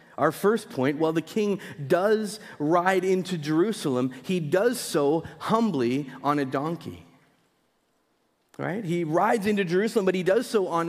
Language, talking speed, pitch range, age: English, 150 wpm, 145-200 Hz, 40-59